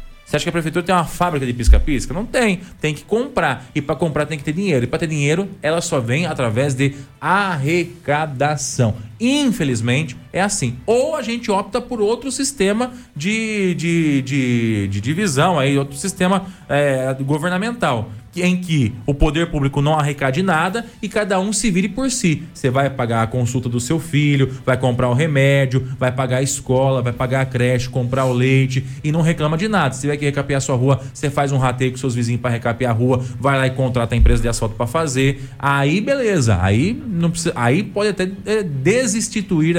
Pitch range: 130-180 Hz